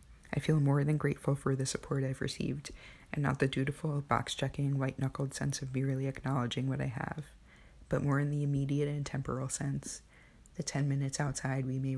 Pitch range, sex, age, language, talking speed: 130-140 Hz, female, 20-39, English, 190 wpm